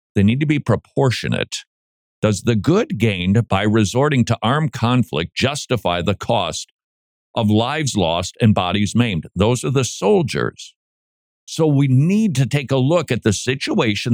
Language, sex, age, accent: English, male, 50-69, American